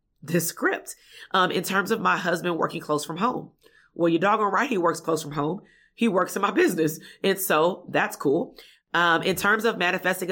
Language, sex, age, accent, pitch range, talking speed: English, female, 30-49, American, 155-180 Hz, 205 wpm